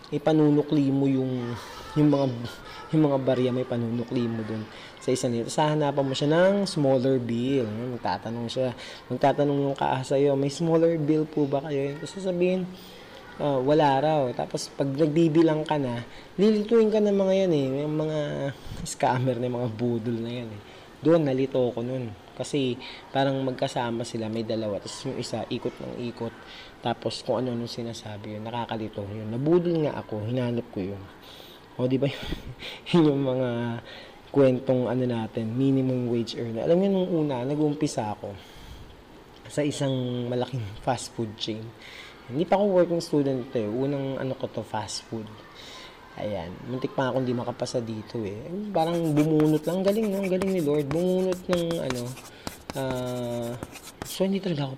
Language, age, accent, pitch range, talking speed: Filipino, 20-39, native, 120-150 Hz, 165 wpm